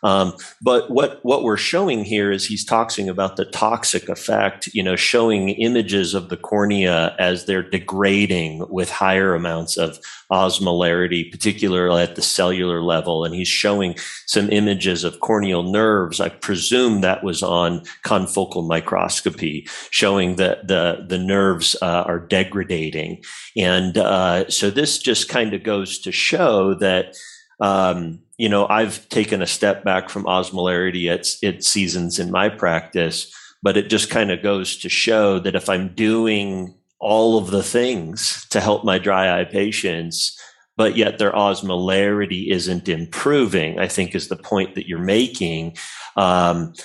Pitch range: 85-100 Hz